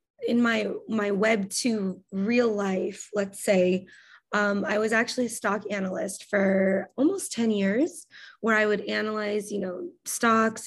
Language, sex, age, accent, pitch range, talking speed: English, female, 20-39, American, 195-240 Hz, 150 wpm